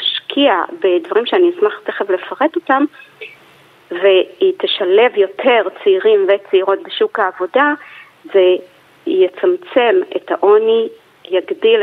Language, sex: Hebrew, female